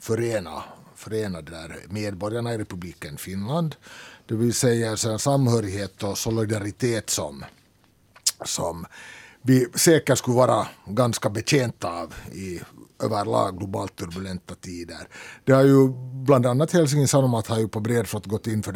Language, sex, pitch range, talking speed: Swedish, male, 100-130 Hz, 135 wpm